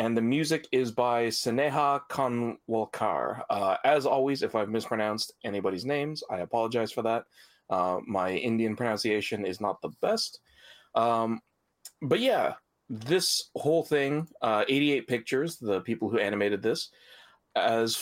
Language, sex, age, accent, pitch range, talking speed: English, male, 30-49, American, 100-130 Hz, 140 wpm